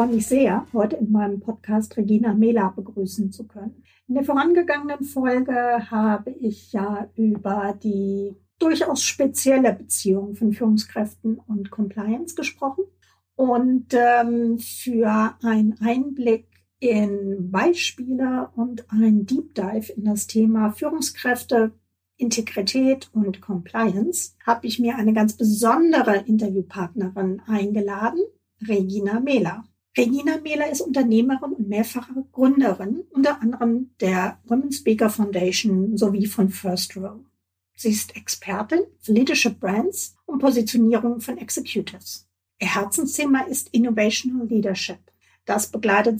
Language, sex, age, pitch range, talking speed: German, female, 50-69, 205-255 Hz, 115 wpm